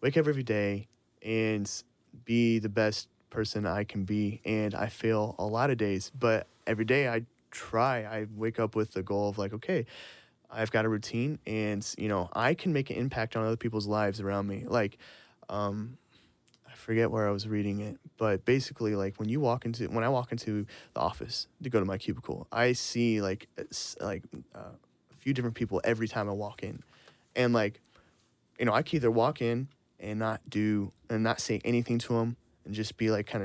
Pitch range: 110-130 Hz